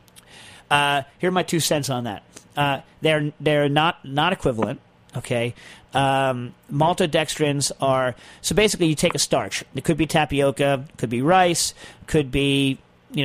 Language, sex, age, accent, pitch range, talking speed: English, male, 40-59, American, 130-155 Hz, 160 wpm